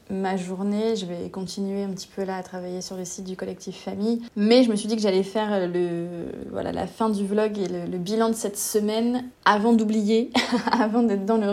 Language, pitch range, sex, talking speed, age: French, 185-225 Hz, female, 230 wpm, 20-39